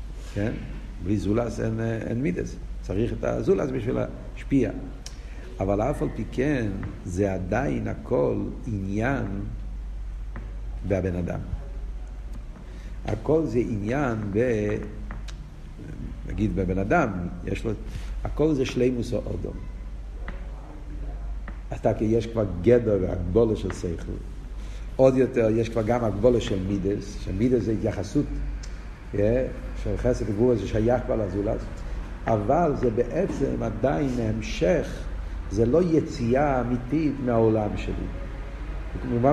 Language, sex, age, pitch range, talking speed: Hebrew, male, 50-69, 100-140 Hz, 115 wpm